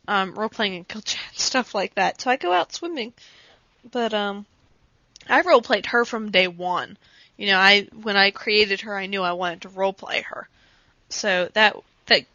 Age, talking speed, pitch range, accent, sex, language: 10-29, 175 wpm, 190-225 Hz, American, female, English